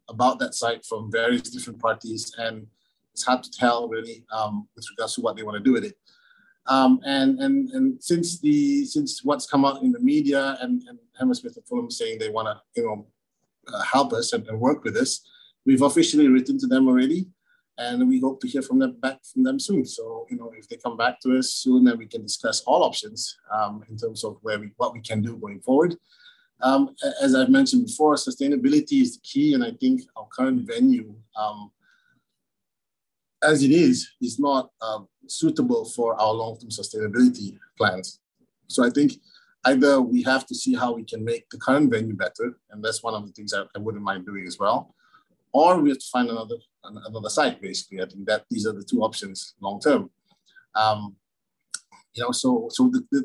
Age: 30-49